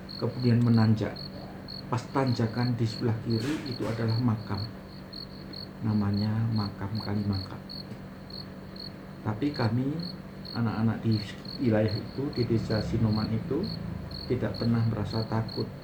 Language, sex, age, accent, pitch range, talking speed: Indonesian, male, 50-69, native, 105-120 Hz, 105 wpm